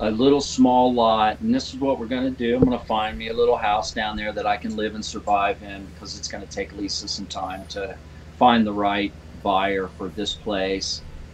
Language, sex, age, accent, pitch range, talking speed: English, male, 40-59, American, 95-125 Hz, 240 wpm